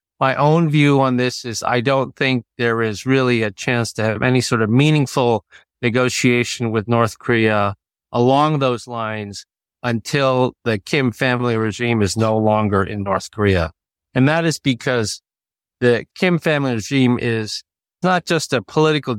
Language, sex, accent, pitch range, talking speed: English, male, American, 110-130 Hz, 160 wpm